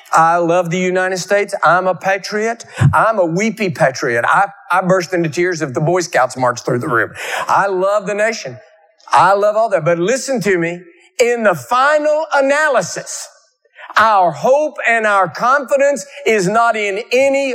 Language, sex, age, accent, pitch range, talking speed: English, male, 50-69, American, 180-280 Hz, 170 wpm